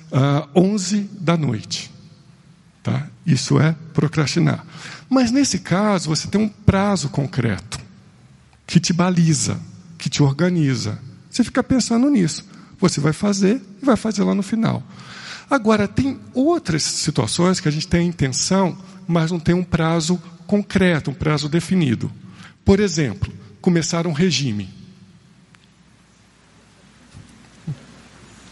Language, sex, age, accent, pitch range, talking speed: Portuguese, male, 50-69, Brazilian, 145-195 Hz, 120 wpm